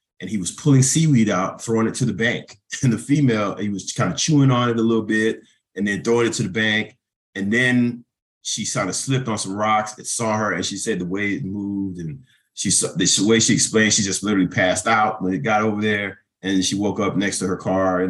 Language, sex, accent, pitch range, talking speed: English, male, American, 95-125 Hz, 250 wpm